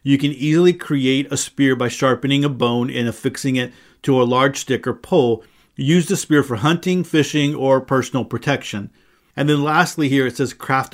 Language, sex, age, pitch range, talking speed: English, male, 40-59, 120-140 Hz, 190 wpm